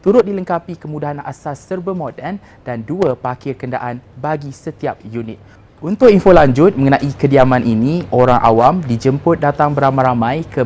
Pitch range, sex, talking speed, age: 120-160 Hz, male, 140 wpm, 20-39